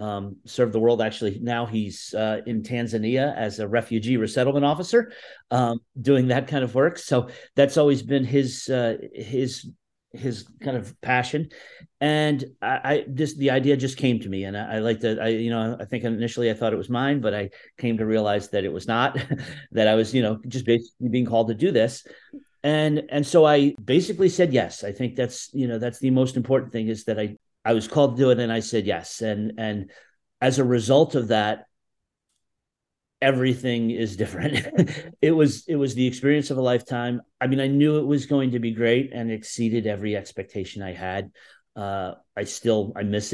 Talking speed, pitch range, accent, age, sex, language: 205 wpm, 115-140 Hz, American, 40-59, male, English